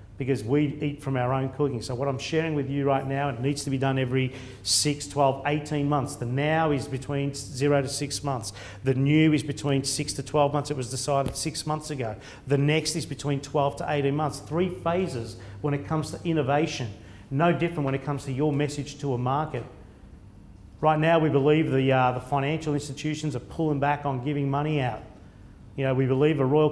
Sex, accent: male, Australian